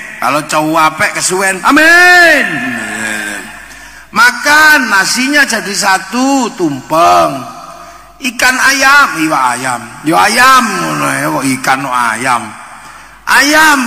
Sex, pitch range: male, 185-300 Hz